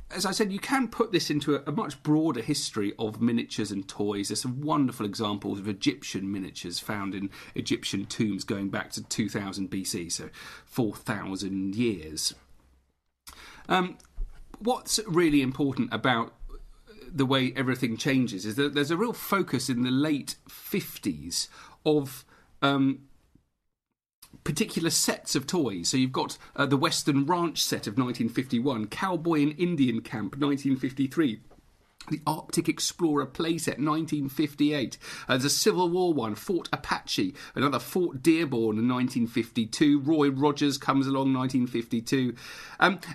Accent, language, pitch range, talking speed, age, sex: British, English, 115-160 Hz, 135 wpm, 40-59, male